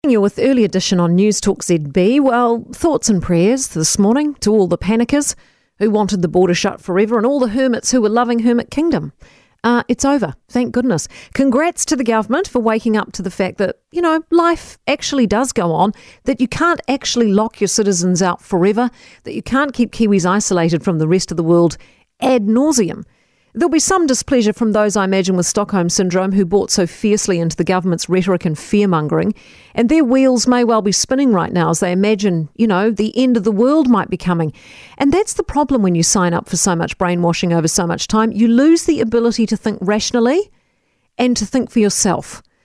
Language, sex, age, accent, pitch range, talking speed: English, female, 40-59, Australian, 190-260 Hz, 210 wpm